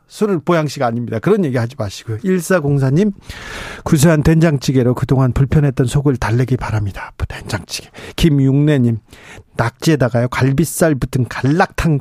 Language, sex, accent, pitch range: Korean, male, native, 130-165 Hz